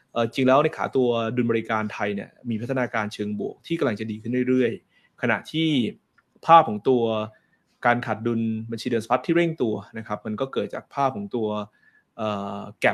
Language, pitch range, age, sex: Thai, 110-140 Hz, 20-39, male